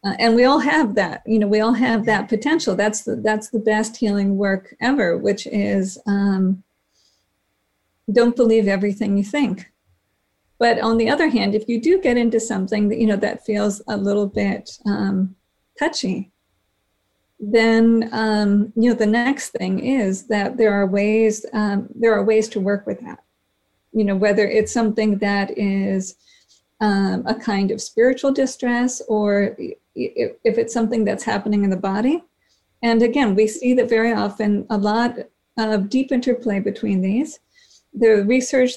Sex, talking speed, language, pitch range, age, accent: female, 165 wpm, English, 200-235 Hz, 50-69, American